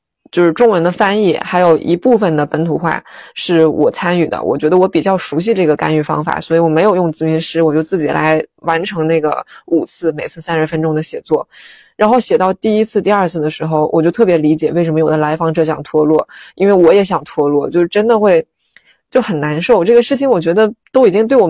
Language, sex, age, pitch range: Chinese, female, 20-39, 160-205 Hz